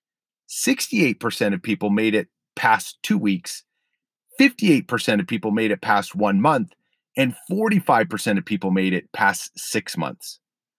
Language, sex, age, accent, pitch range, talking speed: English, male, 40-59, American, 130-205 Hz, 135 wpm